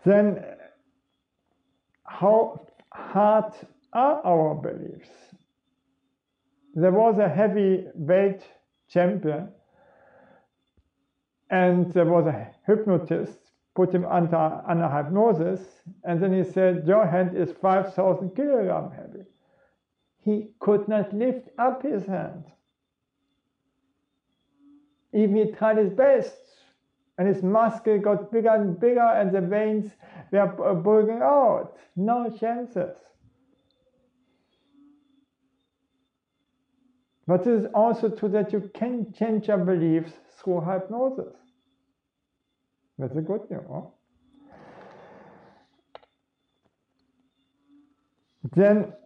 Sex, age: male, 50-69